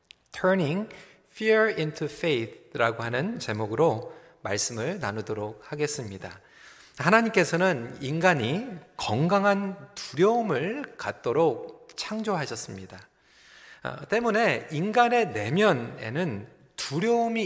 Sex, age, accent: male, 40-59, native